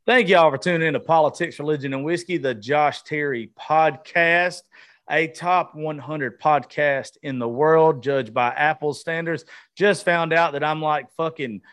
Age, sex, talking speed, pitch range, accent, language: 30-49, male, 165 wpm, 135-170 Hz, American, English